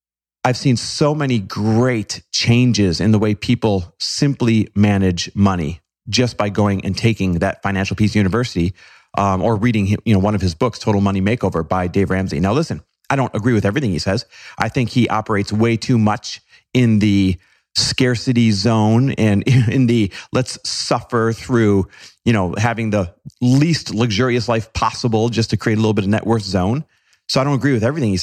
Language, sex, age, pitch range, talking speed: English, male, 30-49, 95-125 Hz, 185 wpm